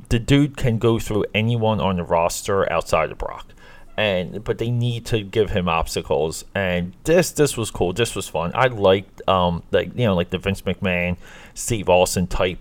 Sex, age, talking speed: male, 30-49, 195 wpm